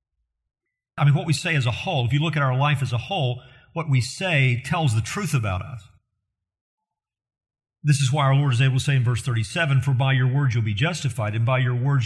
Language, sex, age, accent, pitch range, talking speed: English, male, 50-69, American, 110-140 Hz, 240 wpm